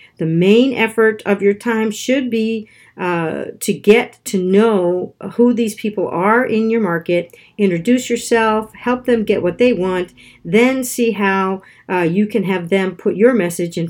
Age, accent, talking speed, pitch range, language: 50-69, American, 175 wpm, 175-220 Hz, English